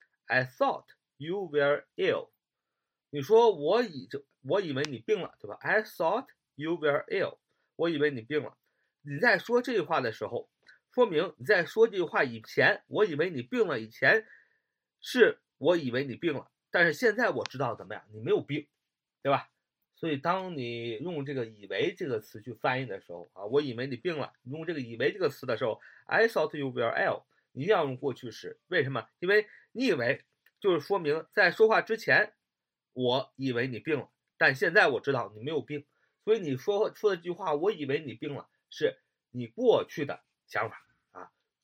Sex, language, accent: male, Chinese, native